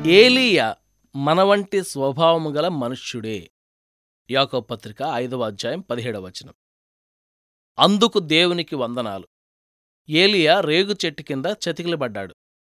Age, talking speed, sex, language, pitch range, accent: 20-39, 90 wpm, male, Telugu, 125-205 Hz, native